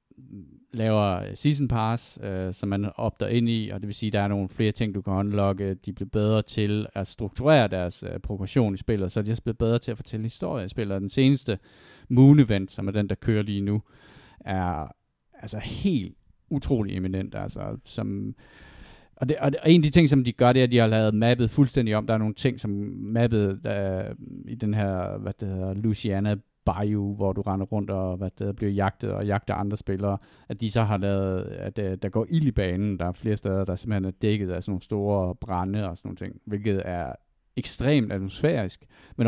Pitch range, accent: 95-115 Hz, native